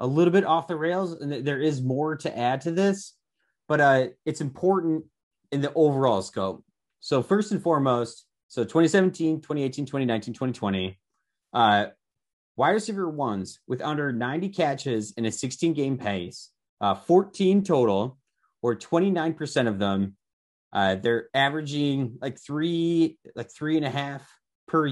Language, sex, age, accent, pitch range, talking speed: English, male, 30-49, American, 115-155 Hz, 150 wpm